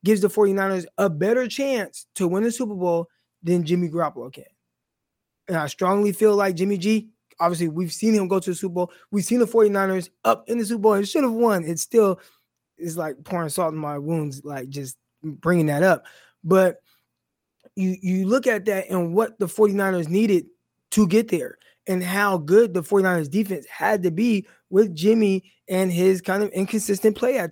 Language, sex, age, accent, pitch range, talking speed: English, male, 20-39, American, 170-210 Hz, 195 wpm